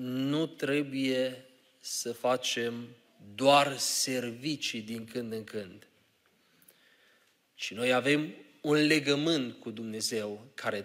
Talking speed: 100 wpm